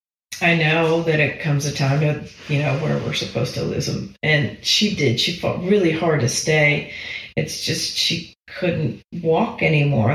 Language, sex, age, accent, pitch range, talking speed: English, female, 30-49, American, 140-165 Hz, 185 wpm